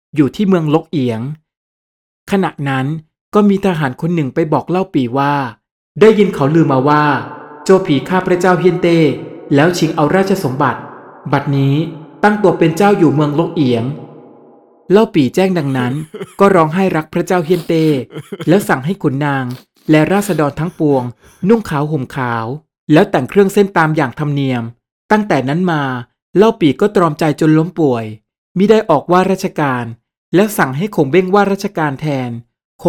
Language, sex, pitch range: Thai, male, 140-185 Hz